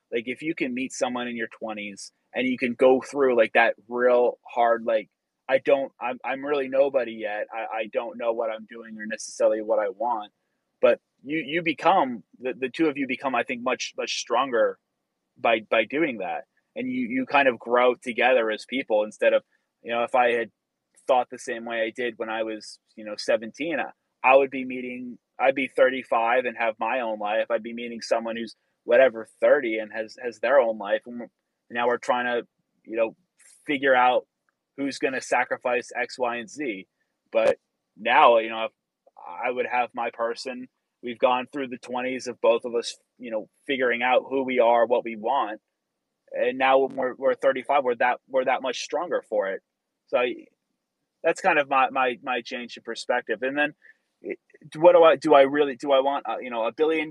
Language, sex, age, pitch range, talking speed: English, male, 20-39, 115-140 Hz, 210 wpm